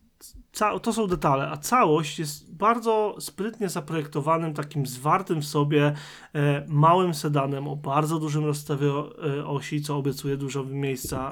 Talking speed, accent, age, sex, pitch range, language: 125 wpm, native, 30-49, male, 145-165 Hz, Polish